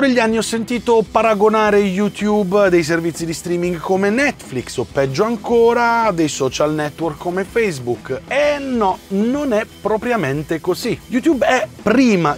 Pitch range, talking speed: 155-230 Hz, 140 wpm